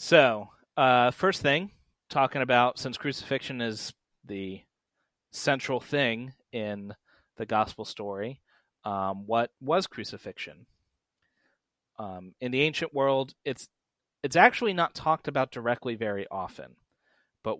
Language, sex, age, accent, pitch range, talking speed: English, male, 30-49, American, 110-135 Hz, 120 wpm